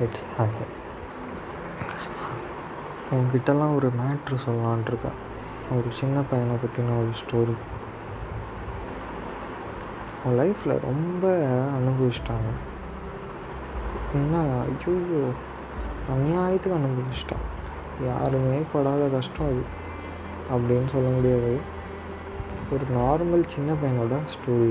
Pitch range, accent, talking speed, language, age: 100-140 Hz, native, 75 wpm, Tamil, 20-39